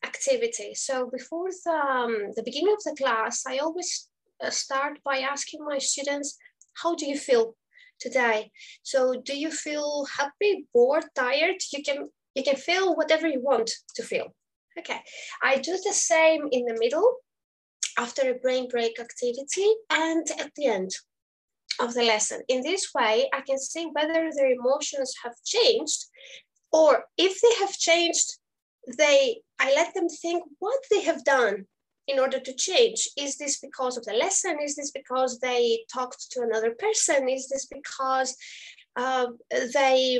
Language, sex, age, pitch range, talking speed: English, female, 20-39, 260-360 Hz, 155 wpm